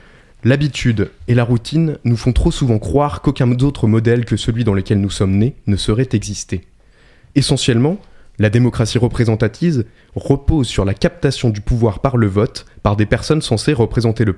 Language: French